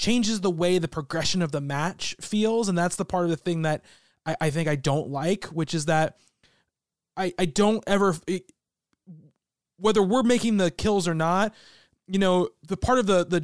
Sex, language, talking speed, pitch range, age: male, English, 200 wpm, 160-190 Hz, 20-39